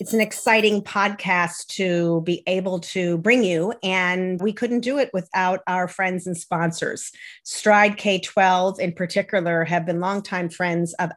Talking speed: 160 wpm